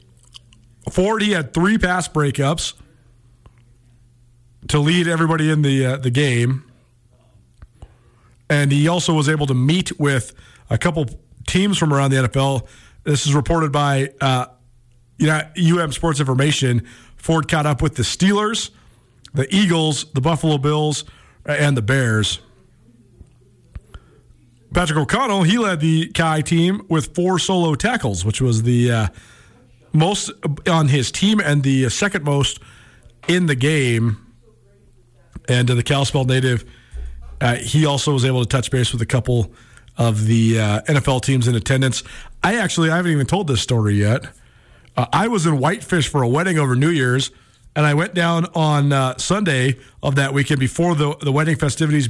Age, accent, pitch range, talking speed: 40-59, American, 120-155 Hz, 155 wpm